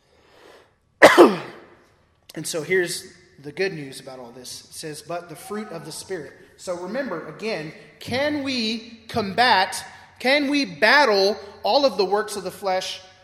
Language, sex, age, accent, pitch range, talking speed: English, male, 30-49, American, 165-220 Hz, 150 wpm